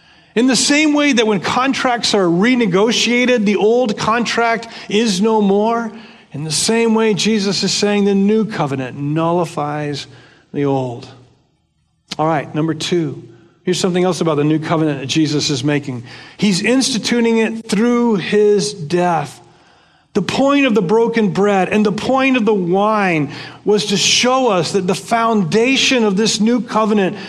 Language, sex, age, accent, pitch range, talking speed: English, male, 40-59, American, 170-225 Hz, 160 wpm